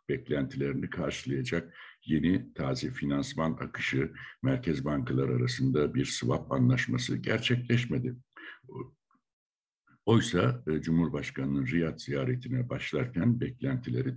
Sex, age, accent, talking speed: male, 60-79, native, 80 wpm